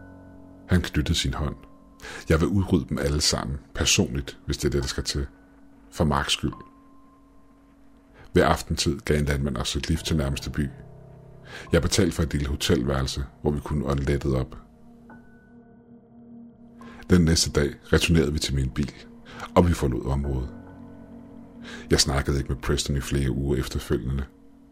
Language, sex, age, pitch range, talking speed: Danish, male, 50-69, 70-90 Hz, 155 wpm